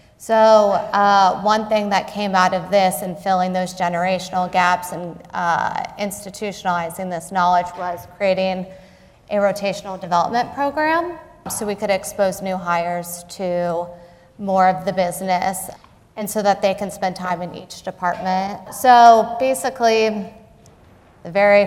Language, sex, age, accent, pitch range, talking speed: English, female, 30-49, American, 175-200 Hz, 140 wpm